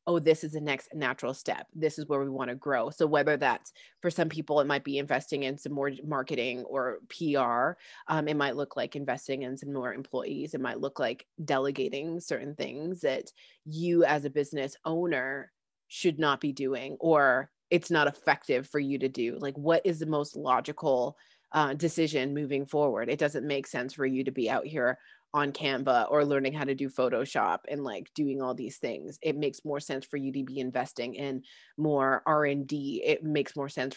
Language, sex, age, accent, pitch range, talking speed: English, female, 30-49, American, 135-165 Hz, 205 wpm